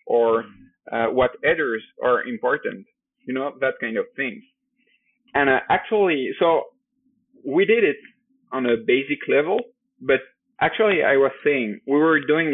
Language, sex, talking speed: English, male, 150 wpm